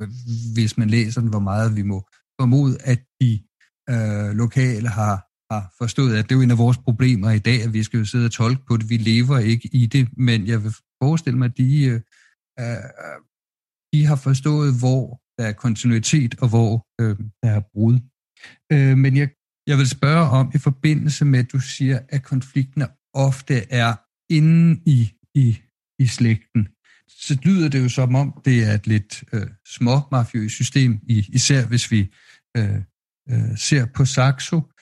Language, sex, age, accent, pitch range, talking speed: Danish, male, 50-69, native, 115-135 Hz, 180 wpm